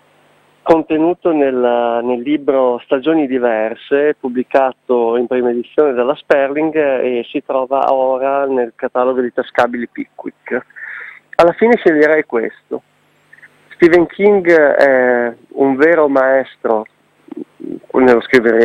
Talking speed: 105 wpm